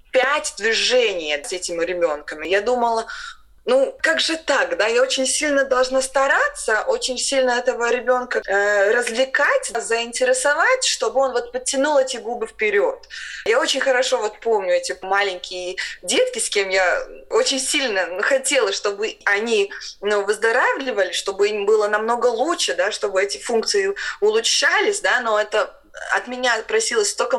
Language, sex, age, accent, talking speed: Russian, female, 20-39, native, 145 wpm